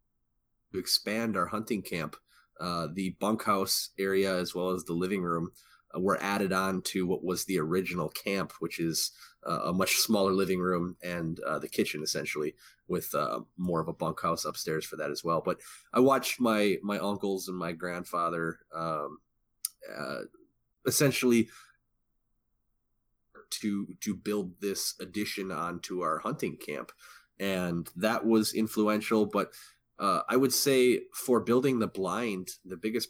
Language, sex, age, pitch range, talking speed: English, male, 30-49, 90-110 Hz, 150 wpm